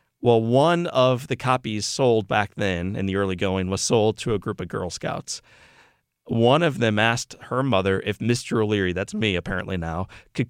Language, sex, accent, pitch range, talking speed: English, male, American, 100-125 Hz, 195 wpm